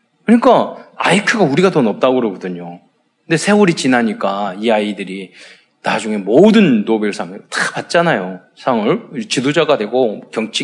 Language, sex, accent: Korean, male, native